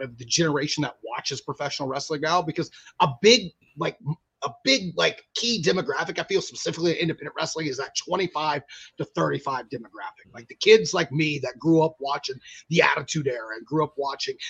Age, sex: 30-49, male